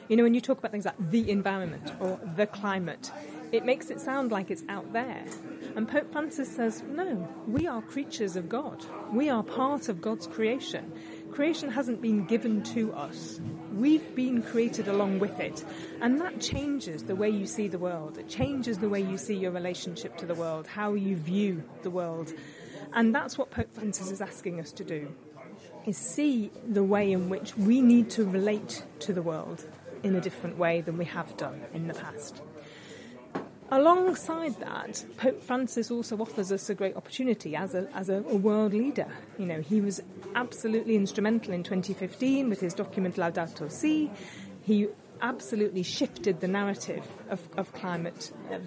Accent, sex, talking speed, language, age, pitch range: British, female, 180 wpm, English, 30-49, 185-240 Hz